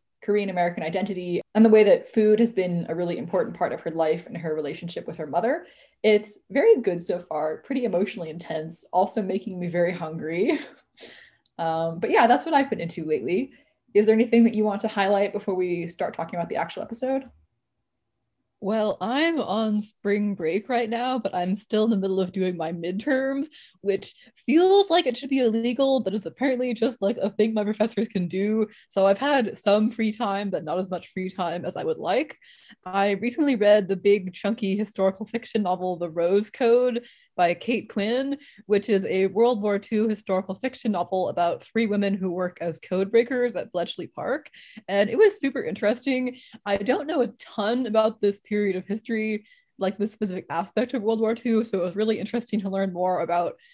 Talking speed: 200 wpm